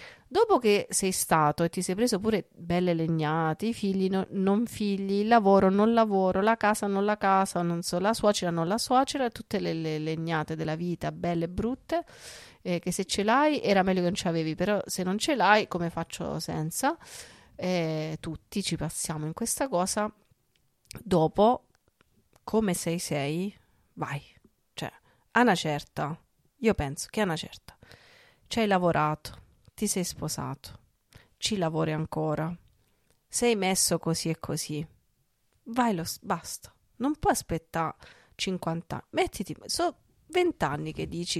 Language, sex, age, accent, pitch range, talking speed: Italian, female, 40-59, native, 165-210 Hz, 155 wpm